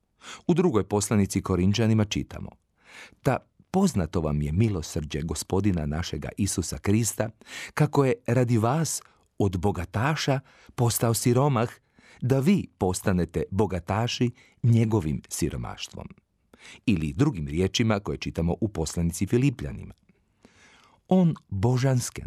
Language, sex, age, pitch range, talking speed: Croatian, male, 40-59, 90-125 Hz, 100 wpm